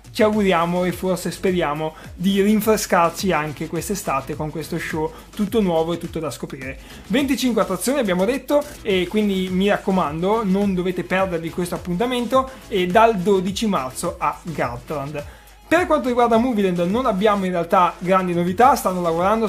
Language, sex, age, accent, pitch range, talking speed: Italian, male, 20-39, native, 170-210 Hz, 150 wpm